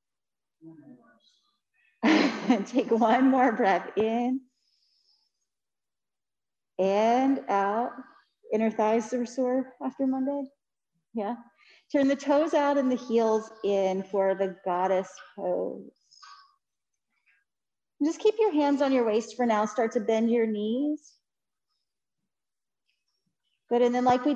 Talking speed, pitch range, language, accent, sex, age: 115 wpm, 225-285 Hz, English, American, female, 40-59